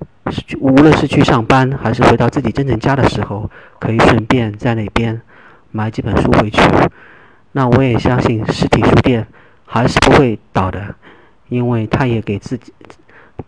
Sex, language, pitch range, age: male, Chinese, 115-145 Hz, 40-59